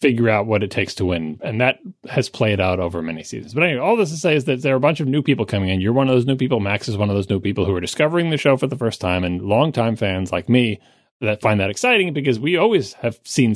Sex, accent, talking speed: male, American, 300 wpm